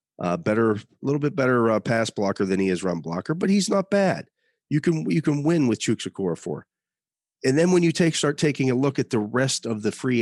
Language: English